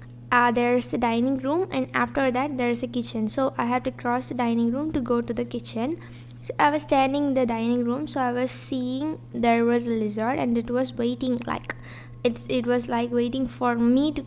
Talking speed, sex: 225 wpm, female